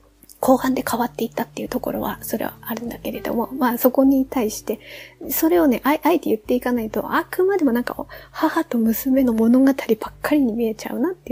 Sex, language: female, Japanese